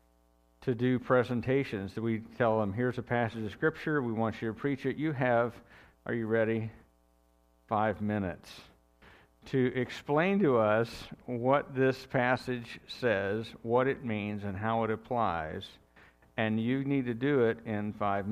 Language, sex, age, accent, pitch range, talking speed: English, male, 50-69, American, 95-120 Hz, 155 wpm